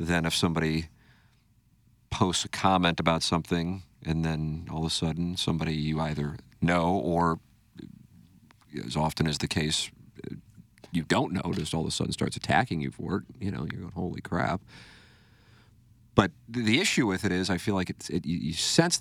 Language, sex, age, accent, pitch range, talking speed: English, male, 40-59, American, 80-105 Hz, 175 wpm